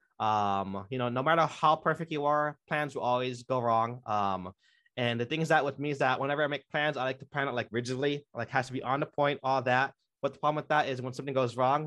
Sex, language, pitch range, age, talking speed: male, English, 120-140 Hz, 20-39, 275 wpm